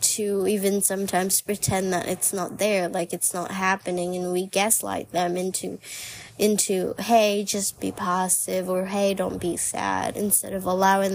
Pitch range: 180-205 Hz